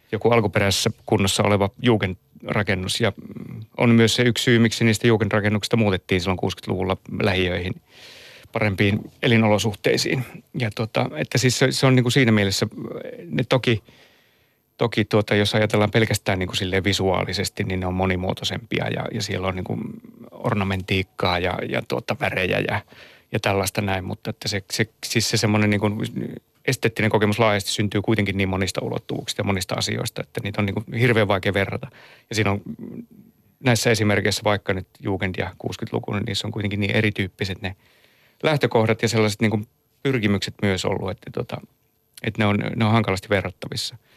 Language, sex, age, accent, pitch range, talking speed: Finnish, male, 30-49, native, 100-115 Hz, 155 wpm